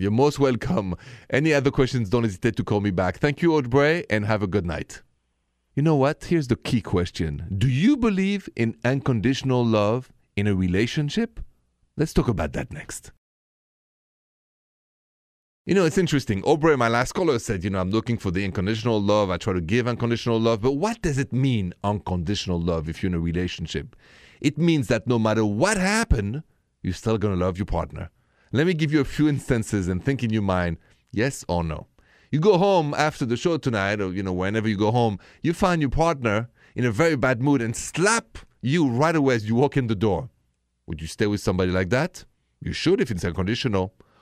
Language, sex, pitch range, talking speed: English, male, 100-145 Hz, 205 wpm